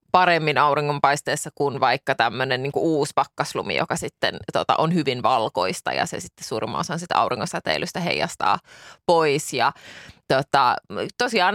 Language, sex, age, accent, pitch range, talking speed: Finnish, female, 20-39, native, 150-175 Hz, 135 wpm